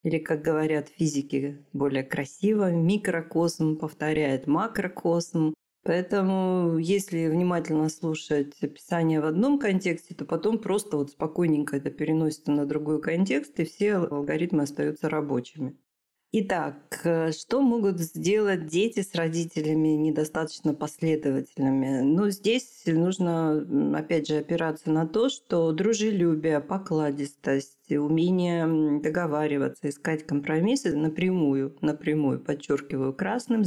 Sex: female